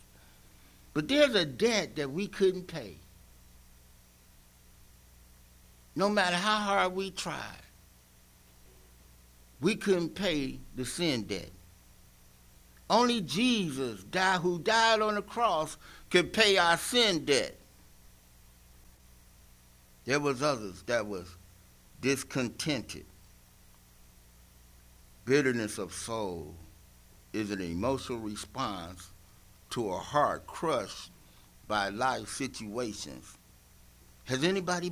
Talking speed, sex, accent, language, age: 95 wpm, male, American, English, 60-79